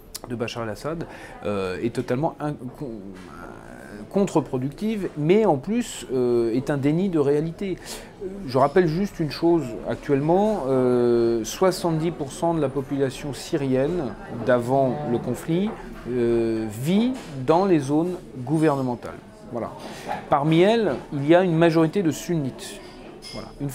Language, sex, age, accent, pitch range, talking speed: French, male, 40-59, French, 125-165 Hz, 125 wpm